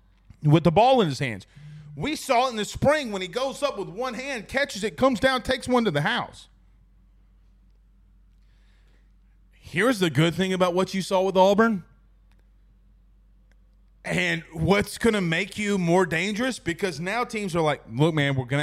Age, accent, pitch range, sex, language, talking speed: 30-49, American, 125-200 Hz, male, English, 175 wpm